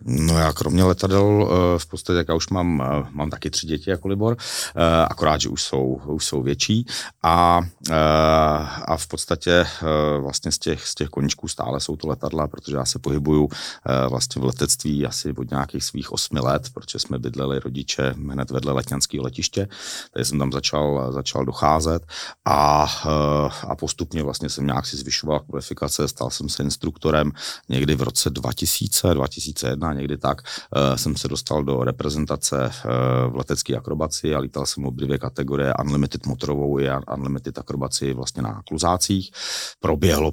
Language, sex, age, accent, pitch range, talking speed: Czech, male, 40-59, native, 70-80 Hz, 155 wpm